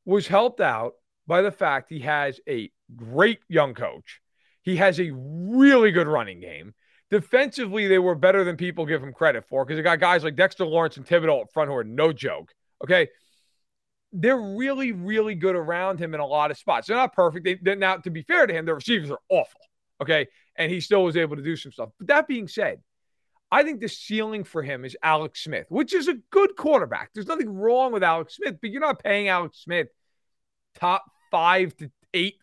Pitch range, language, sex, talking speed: 165-220 Hz, English, male, 210 wpm